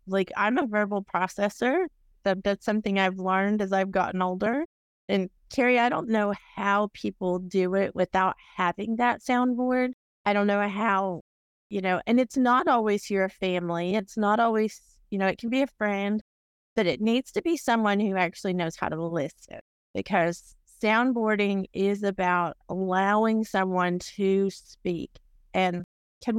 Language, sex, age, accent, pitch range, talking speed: English, female, 30-49, American, 185-225 Hz, 160 wpm